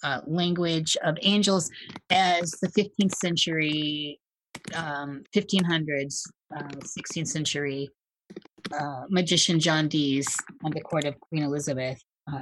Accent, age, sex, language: American, 30-49, female, English